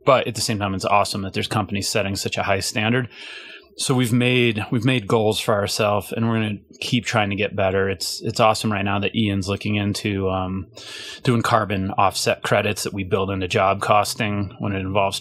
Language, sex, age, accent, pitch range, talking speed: English, male, 30-49, American, 100-115 Hz, 215 wpm